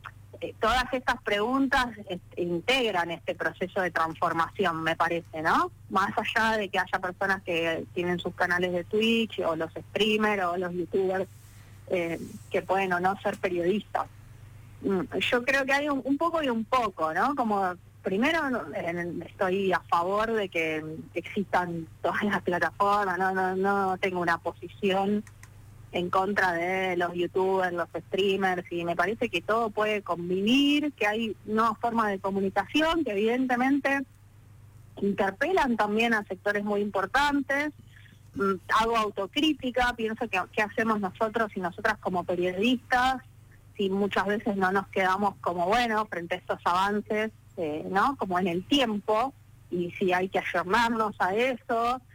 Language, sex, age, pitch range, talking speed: Spanish, female, 20-39, 175-220 Hz, 150 wpm